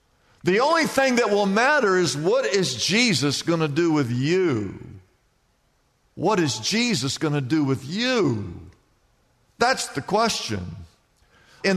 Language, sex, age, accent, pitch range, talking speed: English, male, 50-69, American, 155-215 Hz, 140 wpm